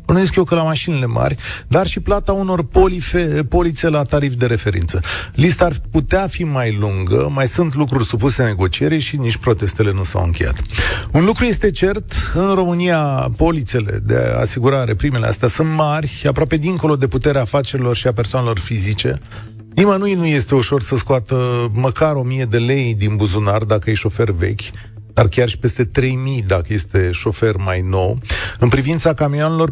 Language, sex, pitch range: Romanian, male, 105-150 Hz